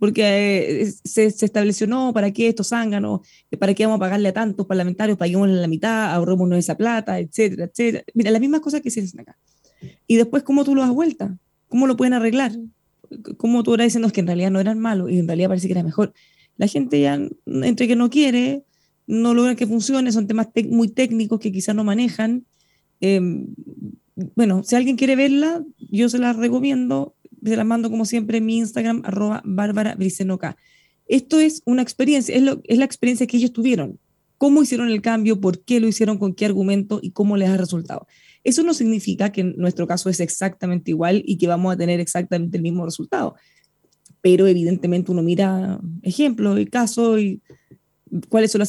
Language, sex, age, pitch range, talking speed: Spanish, female, 20-39, 185-235 Hz, 195 wpm